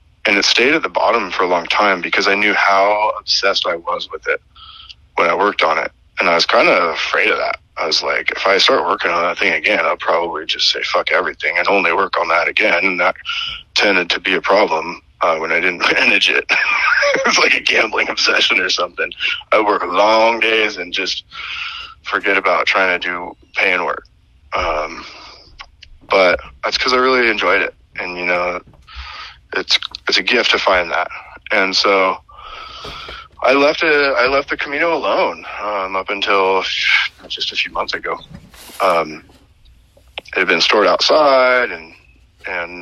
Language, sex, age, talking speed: English, male, 20-39, 185 wpm